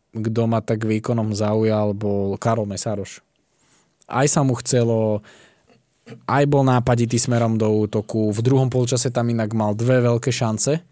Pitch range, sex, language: 110-120 Hz, male, Slovak